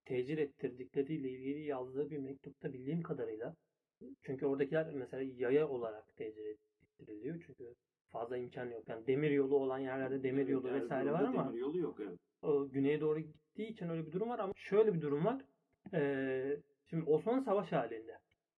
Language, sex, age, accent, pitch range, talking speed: Turkish, male, 30-49, native, 140-195 Hz, 150 wpm